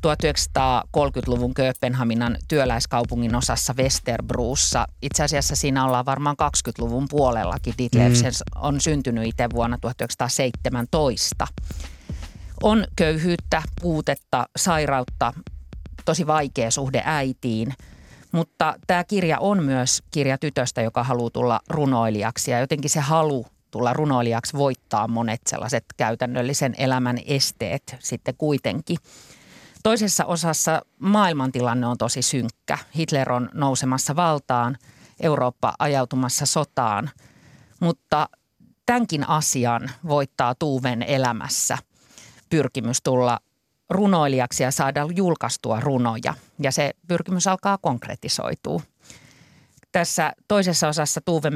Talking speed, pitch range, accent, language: 100 wpm, 120-155 Hz, native, Finnish